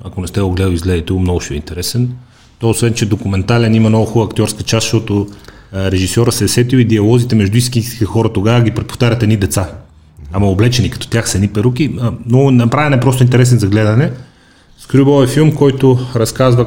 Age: 30-49